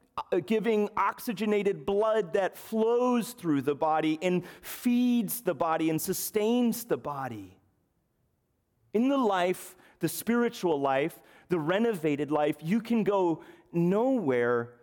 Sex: male